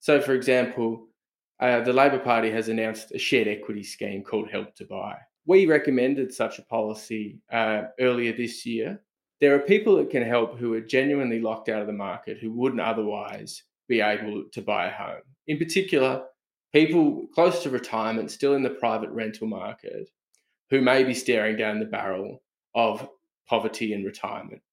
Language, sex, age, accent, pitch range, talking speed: English, male, 20-39, Australian, 110-140 Hz, 175 wpm